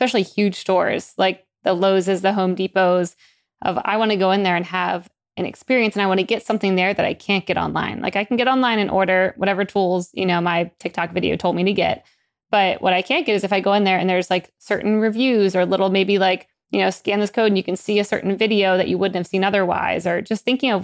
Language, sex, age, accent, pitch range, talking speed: English, female, 20-39, American, 185-205 Hz, 270 wpm